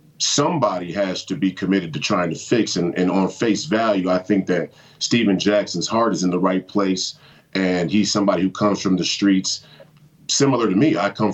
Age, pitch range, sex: 40-59, 95-120 Hz, male